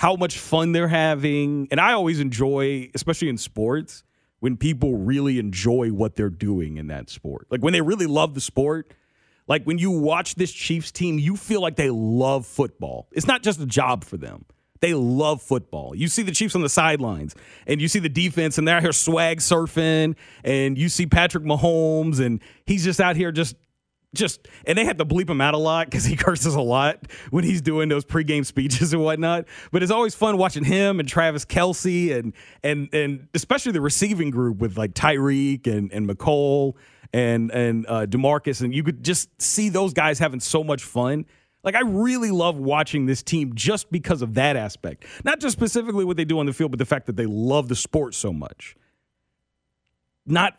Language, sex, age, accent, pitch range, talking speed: English, male, 40-59, American, 125-170 Hz, 205 wpm